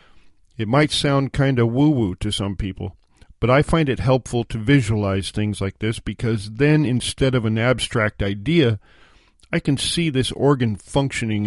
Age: 50-69